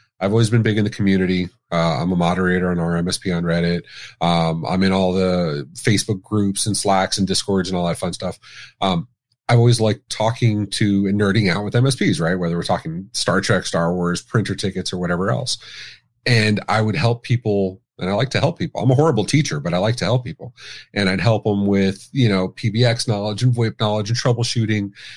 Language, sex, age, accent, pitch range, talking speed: English, male, 30-49, American, 95-120 Hz, 215 wpm